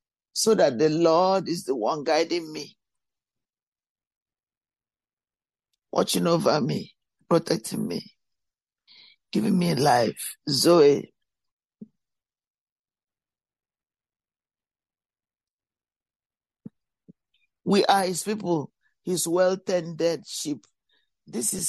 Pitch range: 160-205 Hz